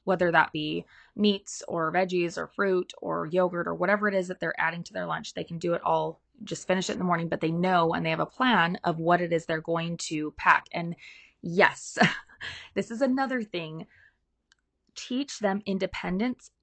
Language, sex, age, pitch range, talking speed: English, female, 20-39, 170-215 Hz, 200 wpm